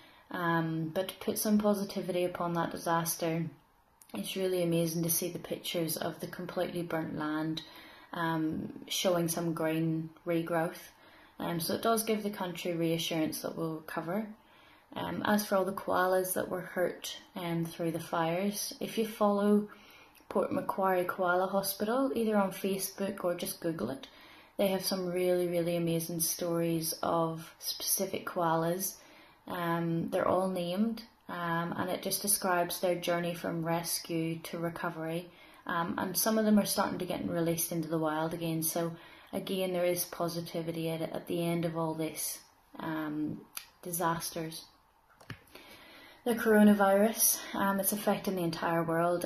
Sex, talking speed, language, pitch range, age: female, 150 wpm, English, 165-195 Hz, 20-39